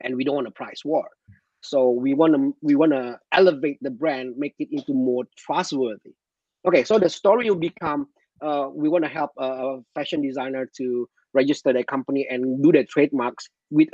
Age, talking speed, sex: 30-49, 195 wpm, male